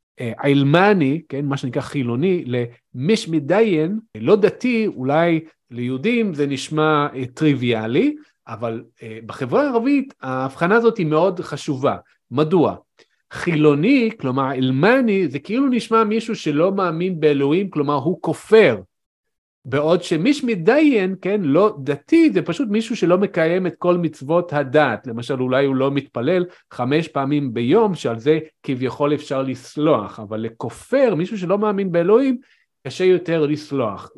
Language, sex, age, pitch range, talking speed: Hebrew, male, 40-59, 135-190 Hz, 130 wpm